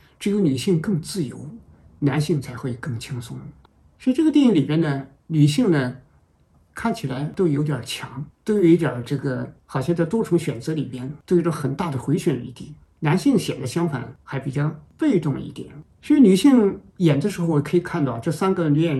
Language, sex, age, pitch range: Chinese, male, 50-69, 140-195 Hz